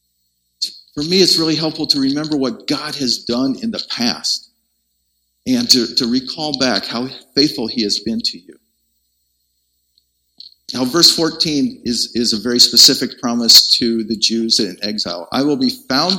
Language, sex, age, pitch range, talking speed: English, male, 50-69, 100-155 Hz, 165 wpm